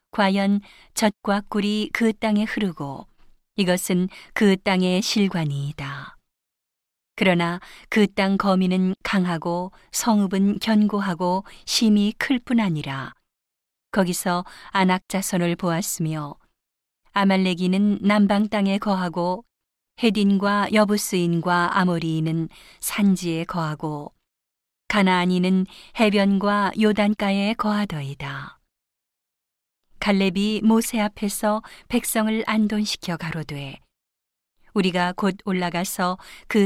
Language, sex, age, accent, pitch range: Korean, female, 40-59, native, 175-205 Hz